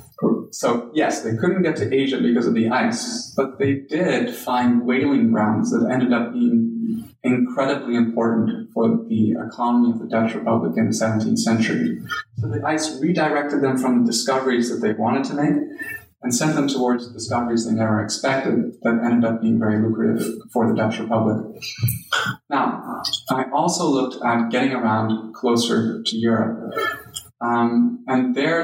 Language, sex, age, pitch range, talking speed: English, male, 30-49, 115-135 Hz, 165 wpm